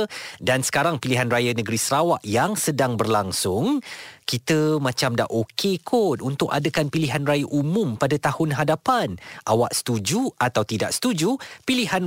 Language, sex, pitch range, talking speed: Malay, male, 120-160 Hz, 140 wpm